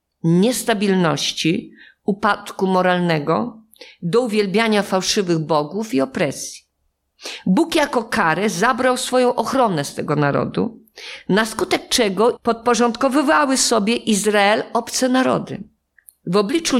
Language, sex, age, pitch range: Polish, female, 50-69, 195-245 Hz